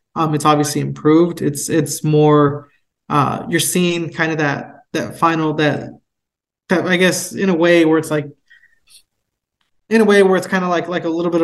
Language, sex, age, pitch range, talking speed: English, male, 20-39, 145-170 Hz, 195 wpm